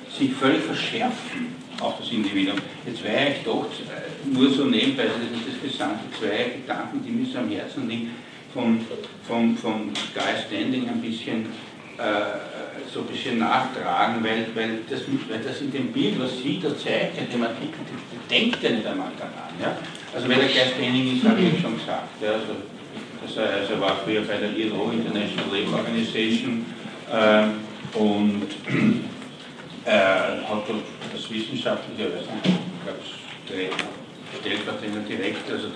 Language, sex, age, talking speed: German, male, 60-79, 145 wpm